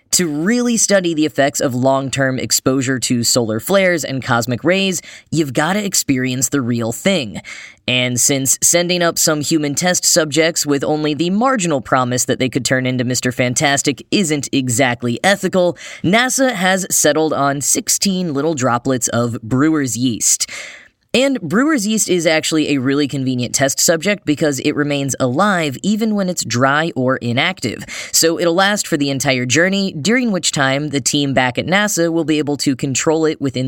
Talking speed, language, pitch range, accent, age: 170 wpm, English, 130-170 Hz, American, 10-29